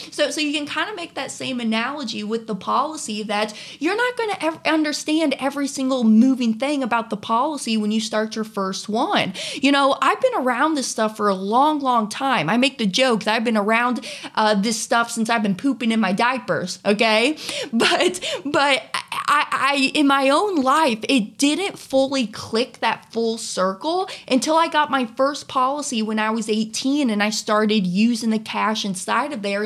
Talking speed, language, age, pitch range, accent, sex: 195 wpm, English, 20-39, 210-270 Hz, American, female